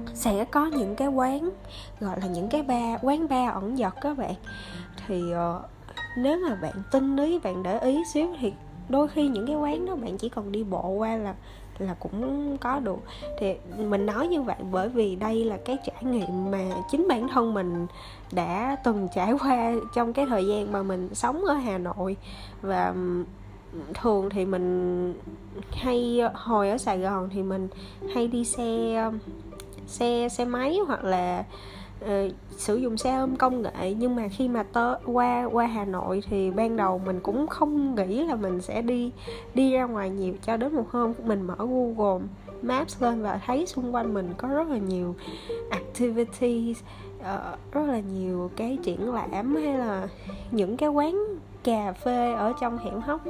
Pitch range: 190-260 Hz